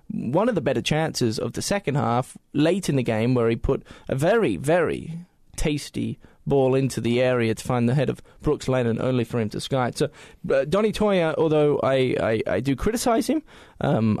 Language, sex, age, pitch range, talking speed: English, male, 20-39, 120-165 Hz, 205 wpm